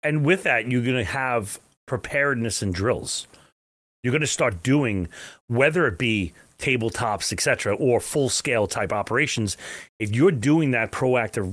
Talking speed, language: 155 wpm, English